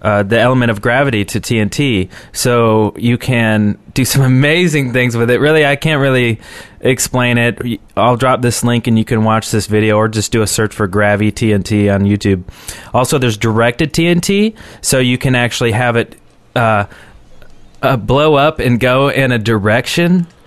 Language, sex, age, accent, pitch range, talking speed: English, male, 20-39, American, 110-135 Hz, 180 wpm